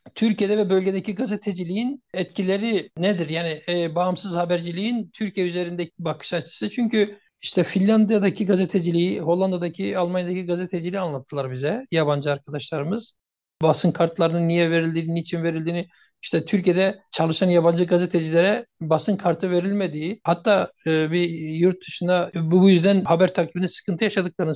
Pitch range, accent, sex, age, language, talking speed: 180-225 Hz, native, male, 60-79, Turkish, 115 wpm